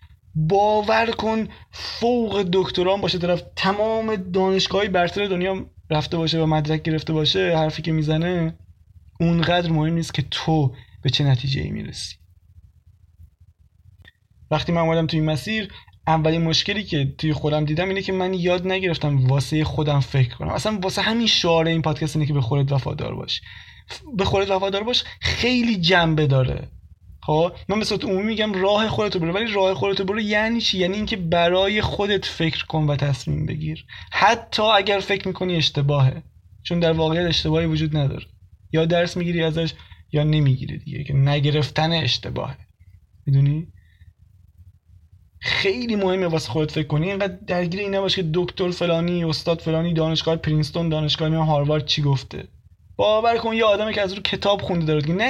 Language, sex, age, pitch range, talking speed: Persian, male, 20-39, 140-190 Hz, 155 wpm